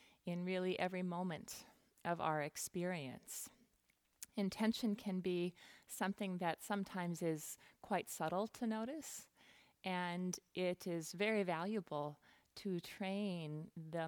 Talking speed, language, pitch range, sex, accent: 110 wpm, English, 155-190 Hz, female, American